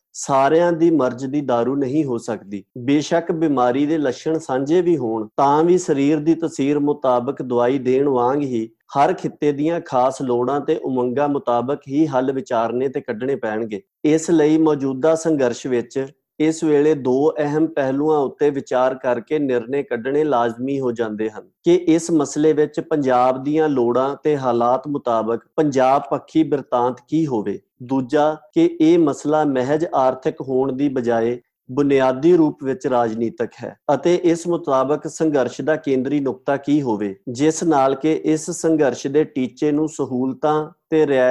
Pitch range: 125-155 Hz